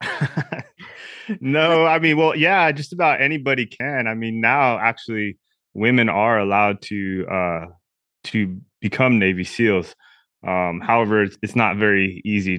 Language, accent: English, American